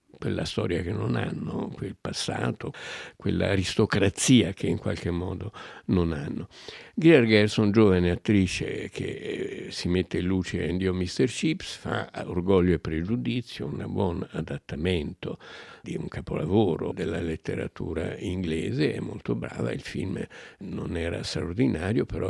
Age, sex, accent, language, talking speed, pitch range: 60-79, male, native, Italian, 130 wpm, 85-105 Hz